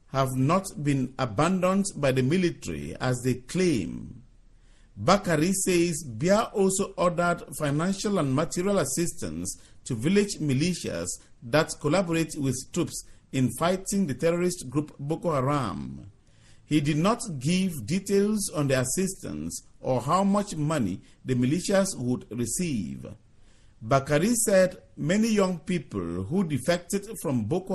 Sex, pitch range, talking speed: male, 130-185 Hz, 125 wpm